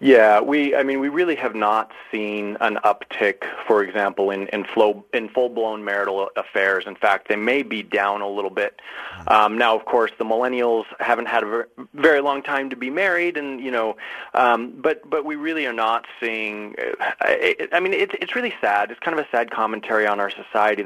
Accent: American